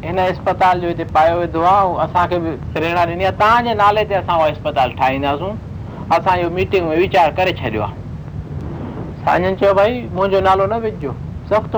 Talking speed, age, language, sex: 125 wpm, 50-69, Hindi, male